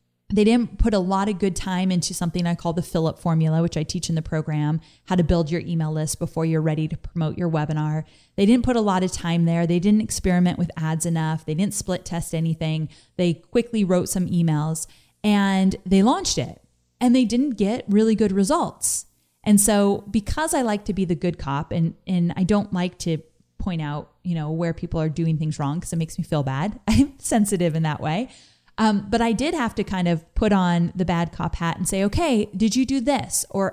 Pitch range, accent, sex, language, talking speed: 160-215 Hz, American, female, English, 230 wpm